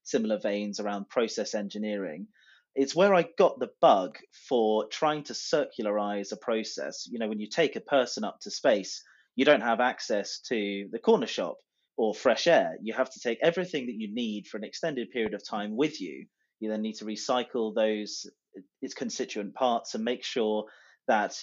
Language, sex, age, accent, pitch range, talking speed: English, male, 30-49, British, 105-130 Hz, 190 wpm